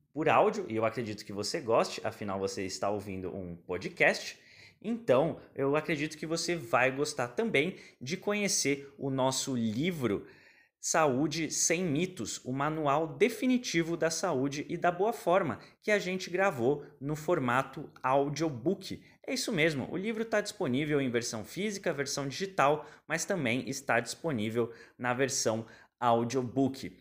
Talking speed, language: 145 wpm, Portuguese